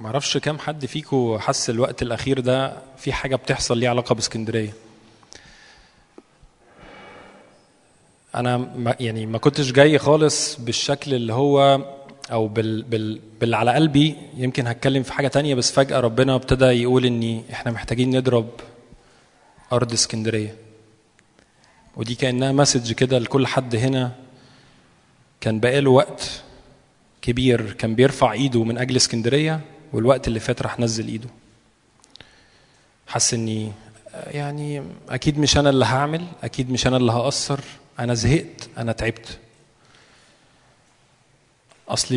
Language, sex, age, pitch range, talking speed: Arabic, male, 20-39, 115-140 Hz, 125 wpm